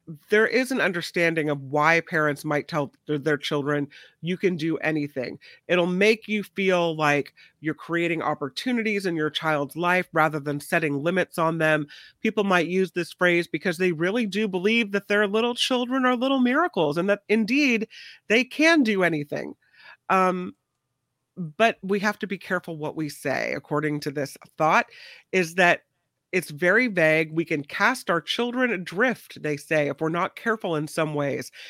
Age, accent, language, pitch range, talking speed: 40-59, American, English, 155-210 Hz, 175 wpm